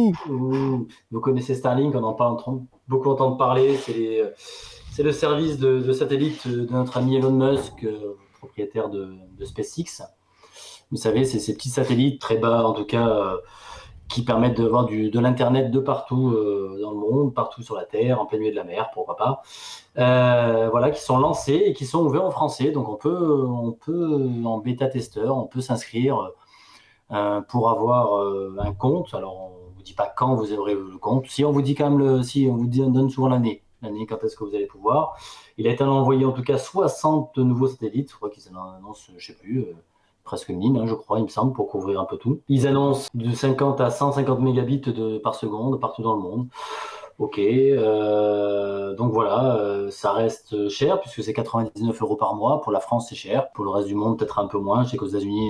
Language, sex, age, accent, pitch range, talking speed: French, male, 20-39, French, 110-135 Hz, 225 wpm